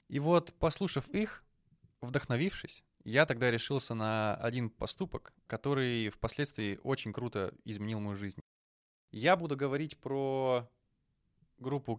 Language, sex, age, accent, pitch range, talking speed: Russian, male, 20-39, native, 115-145 Hz, 115 wpm